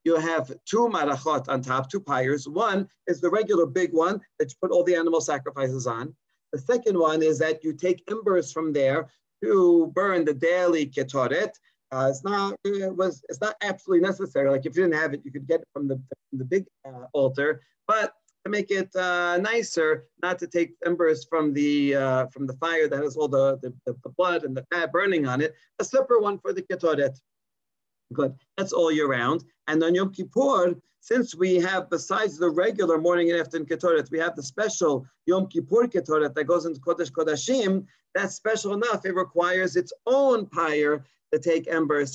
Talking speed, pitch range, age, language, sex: 195 wpm, 145-190 Hz, 40-59, English, male